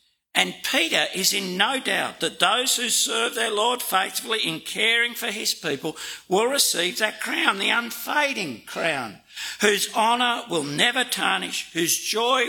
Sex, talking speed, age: male, 155 wpm, 60-79